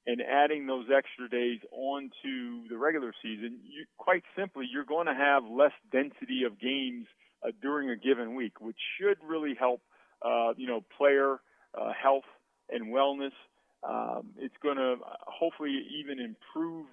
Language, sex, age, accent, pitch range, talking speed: English, male, 40-59, American, 125-150 Hz, 155 wpm